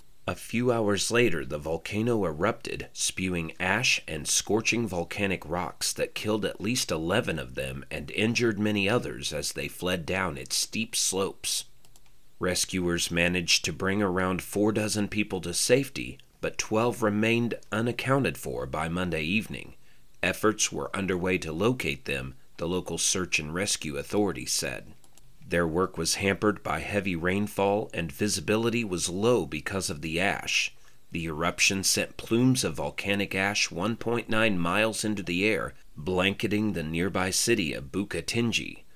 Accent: American